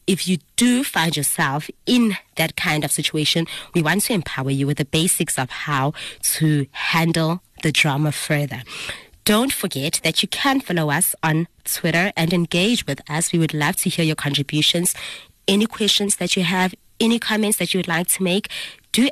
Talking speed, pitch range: 185 wpm, 155-195 Hz